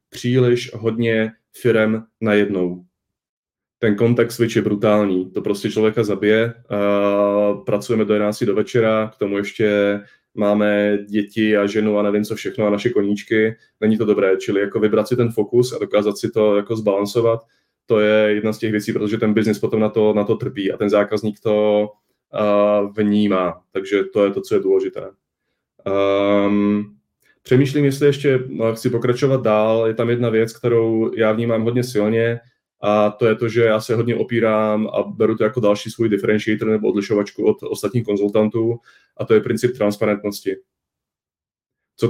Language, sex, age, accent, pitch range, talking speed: Czech, male, 20-39, native, 105-115 Hz, 170 wpm